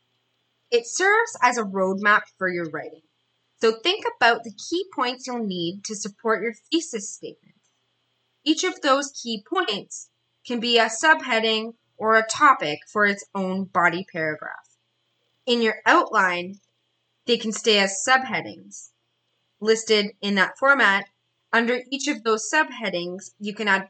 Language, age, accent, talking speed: English, 20-39, American, 145 wpm